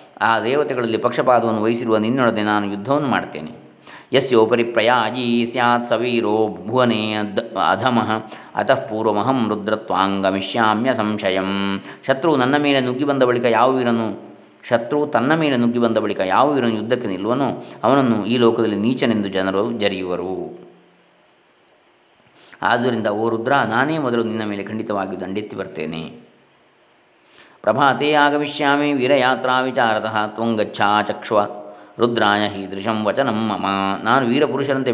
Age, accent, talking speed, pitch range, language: 20-39, native, 105 wpm, 105-125 Hz, Kannada